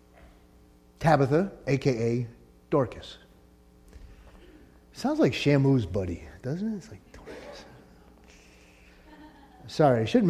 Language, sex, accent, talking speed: English, male, American, 85 wpm